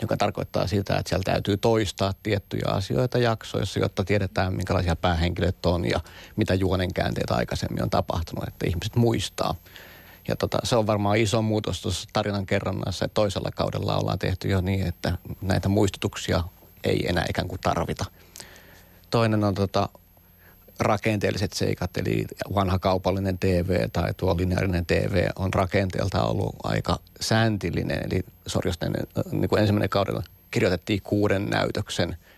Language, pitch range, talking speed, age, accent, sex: Finnish, 90-105 Hz, 140 wpm, 30-49, native, male